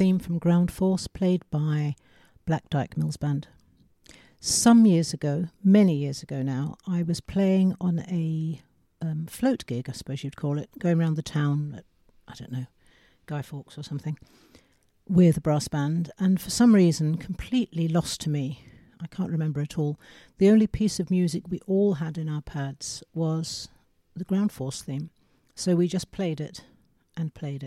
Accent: British